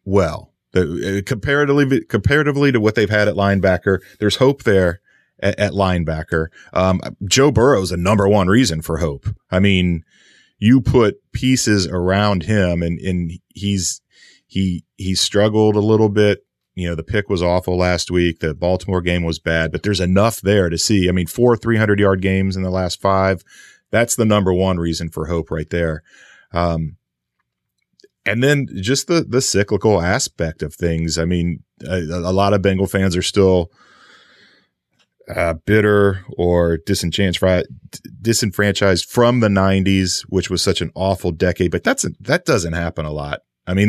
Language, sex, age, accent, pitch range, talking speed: English, male, 30-49, American, 85-105 Hz, 170 wpm